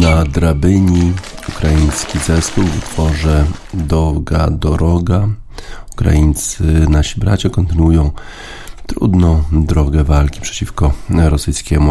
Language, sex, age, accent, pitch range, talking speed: Polish, male, 40-59, native, 70-90 Hz, 85 wpm